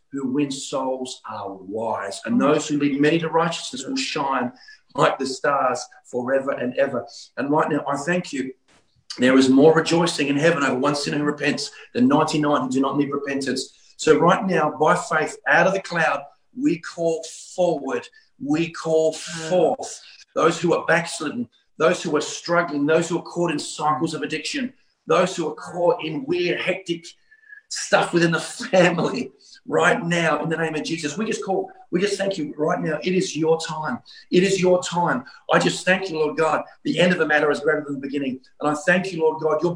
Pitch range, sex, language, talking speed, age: 150-180 Hz, male, English, 200 wpm, 40-59